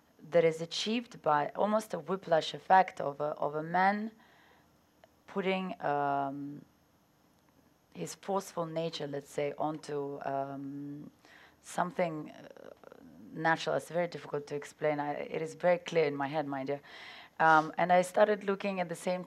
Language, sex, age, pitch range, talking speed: English, female, 30-49, 145-180 Hz, 140 wpm